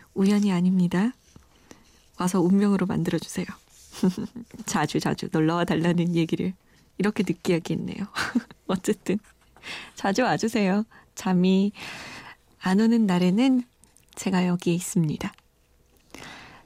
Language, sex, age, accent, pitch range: Korean, female, 20-39, native, 185-235 Hz